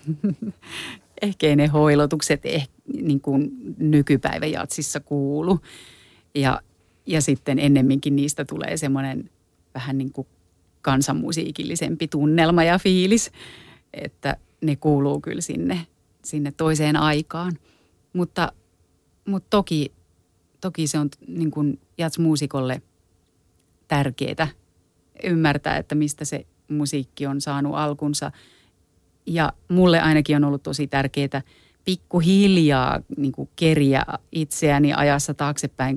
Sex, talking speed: female, 100 wpm